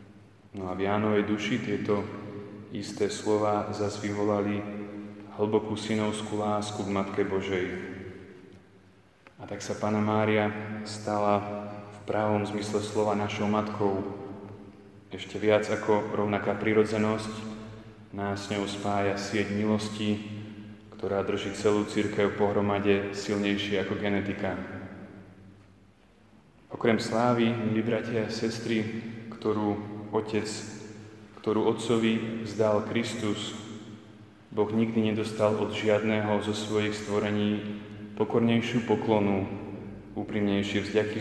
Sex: male